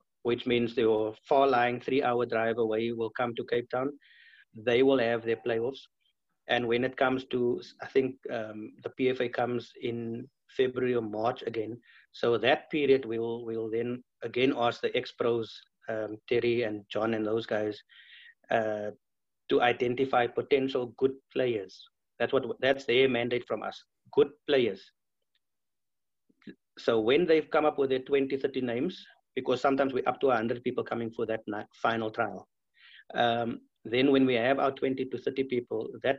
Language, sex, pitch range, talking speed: English, male, 115-135 Hz, 165 wpm